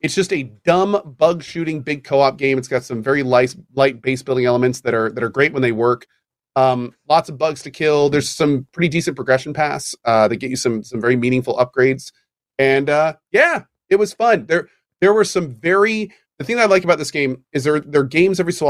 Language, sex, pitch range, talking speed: English, male, 130-175 Hz, 235 wpm